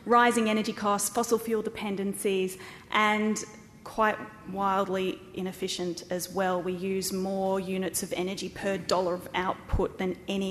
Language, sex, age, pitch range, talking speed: English, female, 30-49, 185-215 Hz, 135 wpm